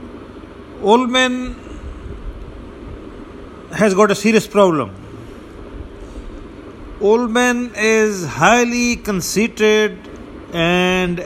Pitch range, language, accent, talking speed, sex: 160-195 Hz, English, Indian, 65 wpm, male